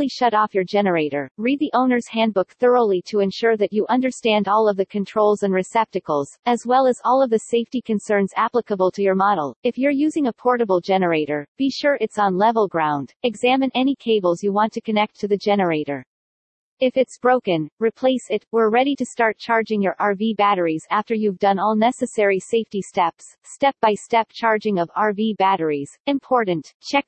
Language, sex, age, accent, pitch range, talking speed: English, female, 40-59, American, 190-245 Hz, 180 wpm